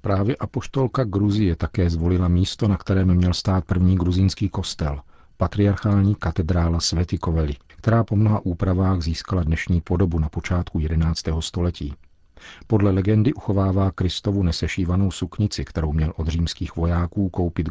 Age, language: 50-69, Czech